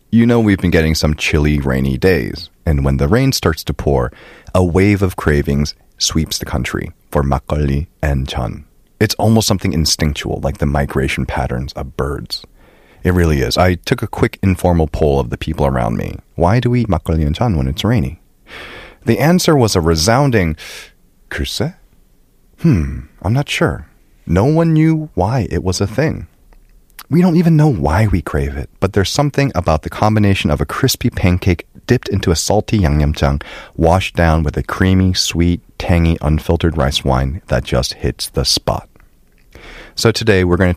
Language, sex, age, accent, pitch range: Korean, male, 30-49, American, 75-105 Hz